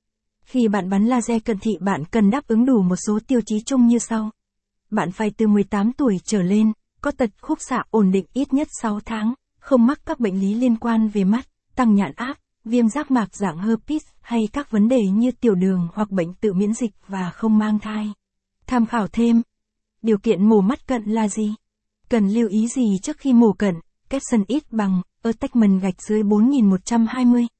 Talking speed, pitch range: 205 wpm, 205-240 Hz